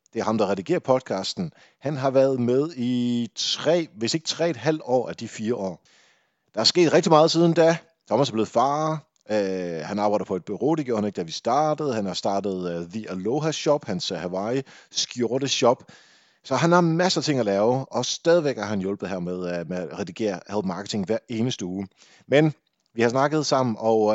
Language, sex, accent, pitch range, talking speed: Danish, male, native, 100-140 Hz, 210 wpm